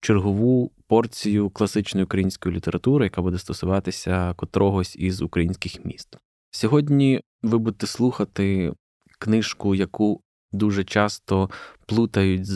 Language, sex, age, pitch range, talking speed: Ukrainian, male, 20-39, 95-110 Hz, 100 wpm